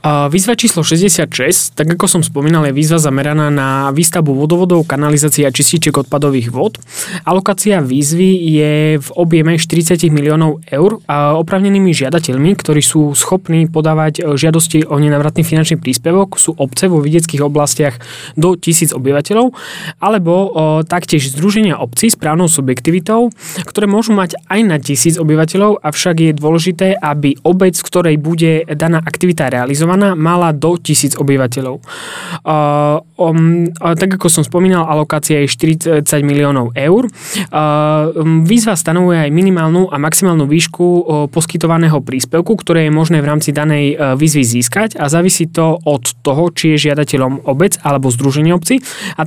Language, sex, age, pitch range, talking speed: Slovak, male, 20-39, 150-175 Hz, 140 wpm